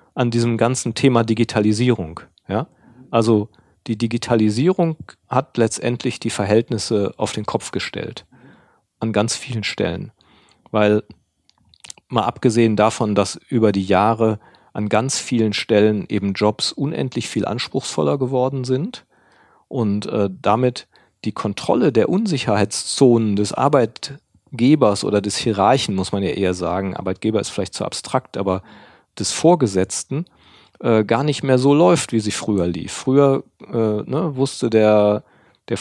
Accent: German